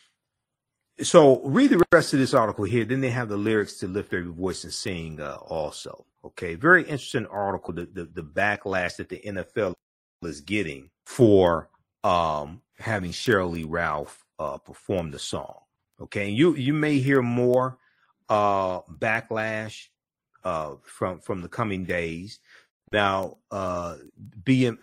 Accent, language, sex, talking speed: American, English, male, 150 wpm